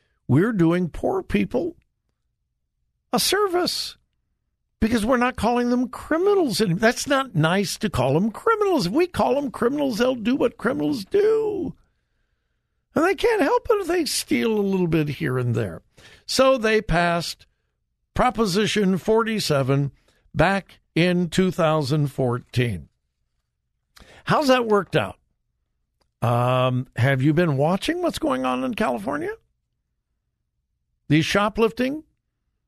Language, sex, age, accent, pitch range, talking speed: English, male, 60-79, American, 150-235 Hz, 125 wpm